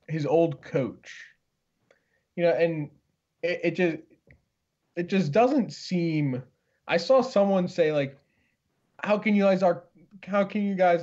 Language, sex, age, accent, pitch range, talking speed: English, male, 20-39, American, 145-180 Hz, 140 wpm